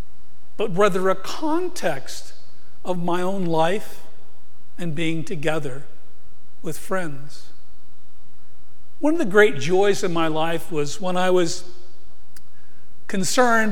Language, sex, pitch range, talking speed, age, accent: English, male, 150-250 Hz, 115 wpm, 50-69, American